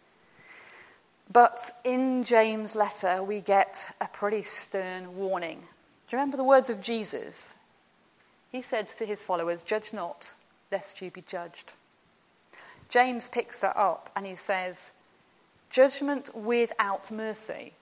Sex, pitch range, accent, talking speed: female, 190-235 Hz, British, 130 wpm